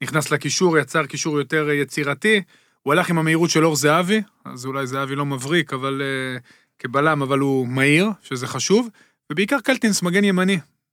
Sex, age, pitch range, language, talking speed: male, 30-49, 145-175 Hz, Hebrew, 170 wpm